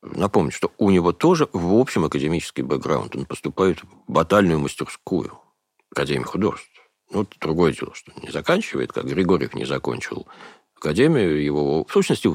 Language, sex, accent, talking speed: Russian, male, native, 145 wpm